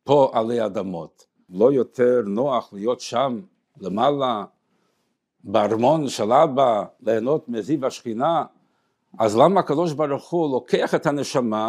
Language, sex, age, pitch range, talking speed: Hebrew, male, 60-79, 115-155 Hz, 120 wpm